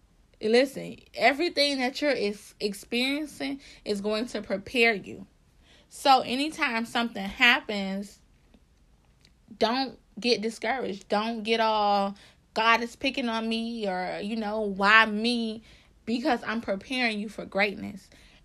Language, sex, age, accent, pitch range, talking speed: English, female, 20-39, American, 210-245 Hz, 115 wpm